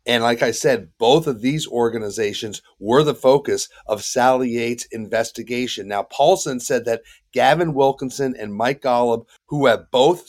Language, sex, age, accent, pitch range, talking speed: English, male, 40-59, American, 120-155 Hz, 155 wpm